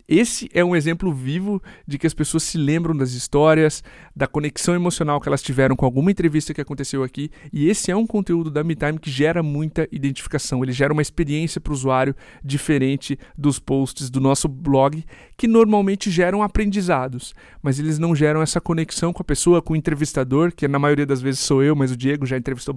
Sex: male